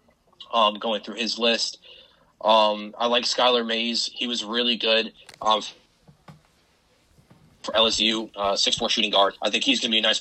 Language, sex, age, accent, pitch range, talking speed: English, male, 20-39, American, 105-125 Hz, 175 wpm